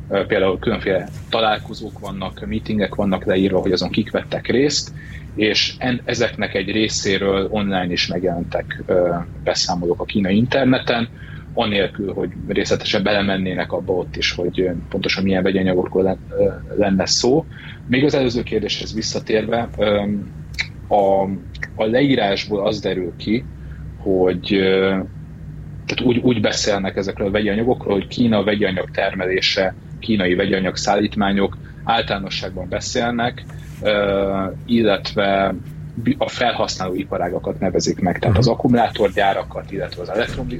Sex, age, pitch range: male, 30-49, 95-110 Hz